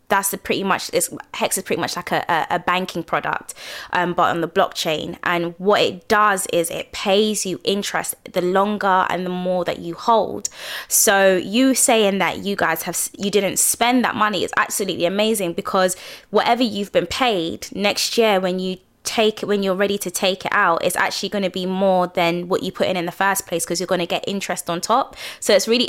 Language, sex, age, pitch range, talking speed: English, female, 20-39, 180-205 Hz, 220 wpm